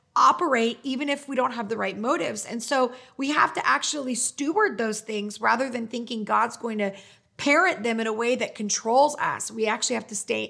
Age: 30-49